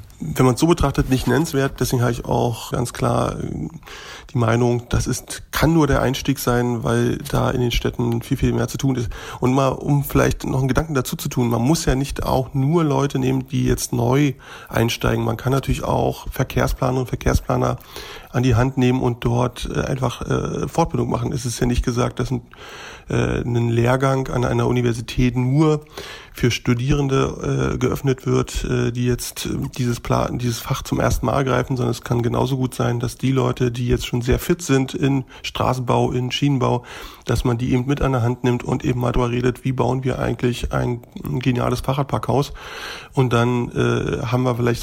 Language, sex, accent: German, male, German